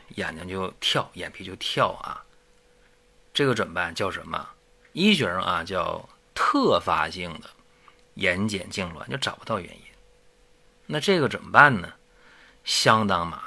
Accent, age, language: native, 30-49, Chinese